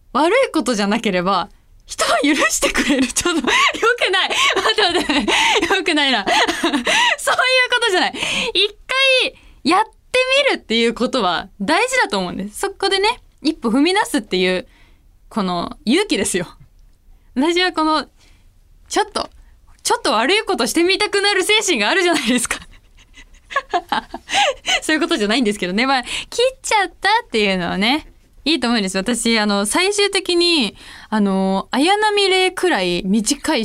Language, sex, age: Japanese, female, 20-39